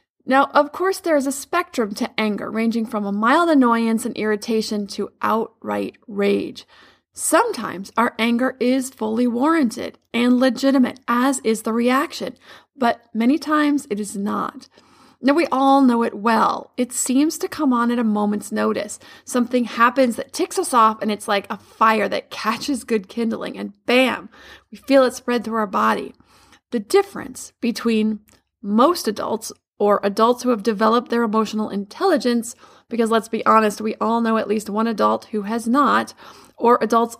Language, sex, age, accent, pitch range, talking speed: English, female, 30-49, American, 215-260 Hz, 170 wpm